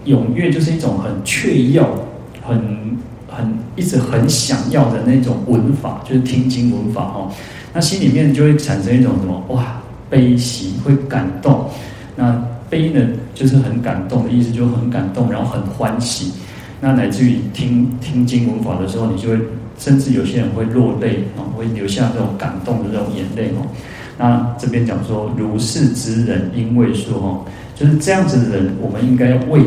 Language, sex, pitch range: Chinese, male, 110-130 Hz